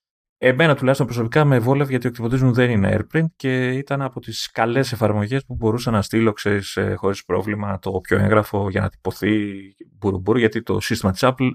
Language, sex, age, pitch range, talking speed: Greek, male, 30-49, 105-155 Hz, 185 wpm